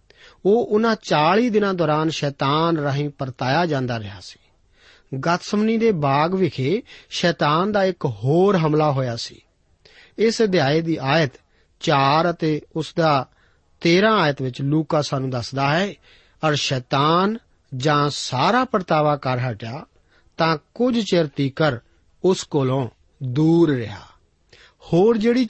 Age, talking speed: 50-69, 125 wpm